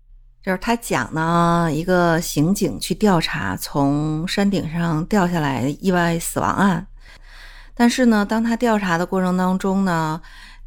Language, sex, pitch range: Chinese, female, 155-205 Hz